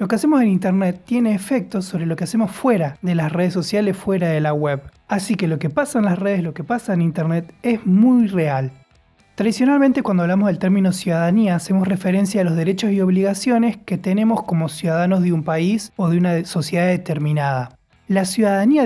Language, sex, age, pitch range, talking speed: Spanish, male, 20-39, 165-220 Hz, 200 wpm